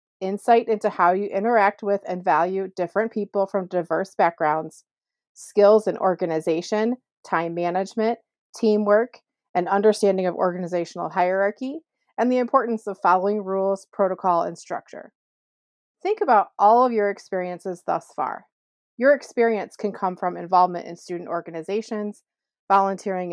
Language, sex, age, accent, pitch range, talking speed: English, female, 30-49, American, 190-235 Hz, 130 wpm